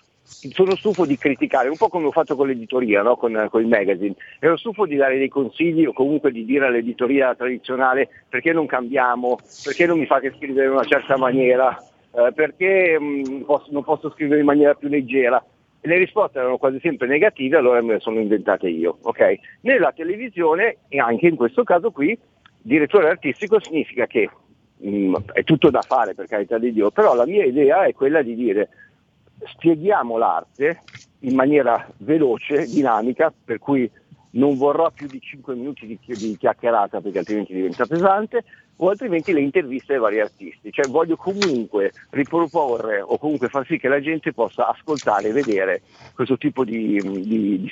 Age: 50-69